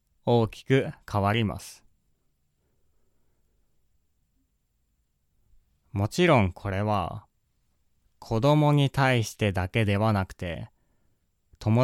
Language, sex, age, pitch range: Japanese, male, 20-39, 95-125 Hz